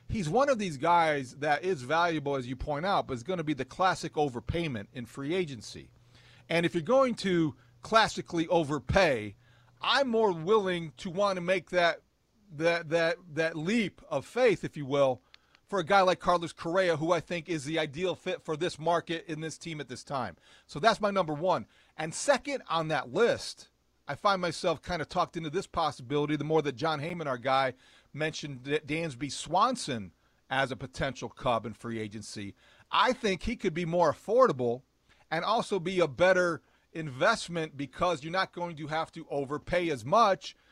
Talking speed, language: 185 wpm, English